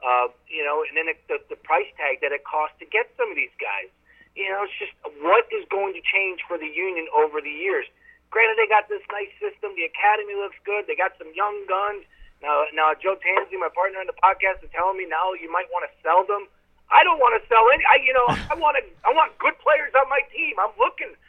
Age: 40-59